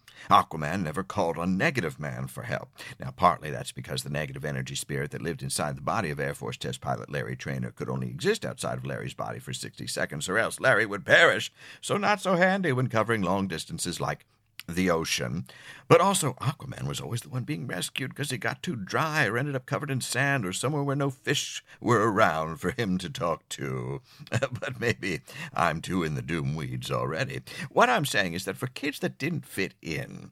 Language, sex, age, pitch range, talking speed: English, male, 60-79, 100-145 Hz, 210 wpm